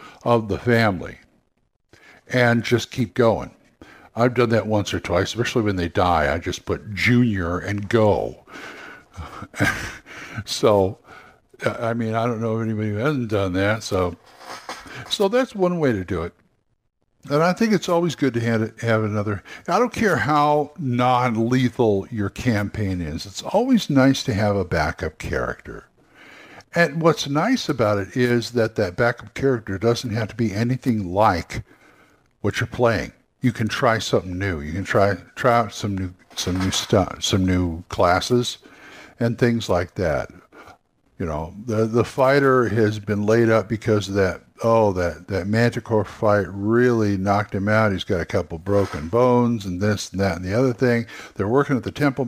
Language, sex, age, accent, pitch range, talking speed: English, male, 60-79, American, 100-125 Hz, 170 wpm